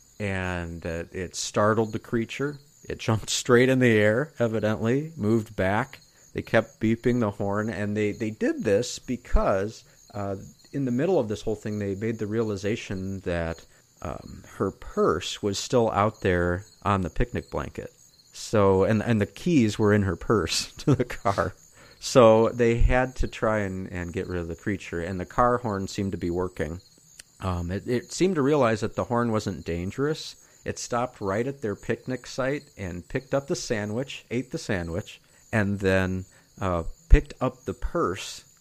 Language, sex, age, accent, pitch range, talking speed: English, male, 40-59, American, 95-120 Hz, 180 wpm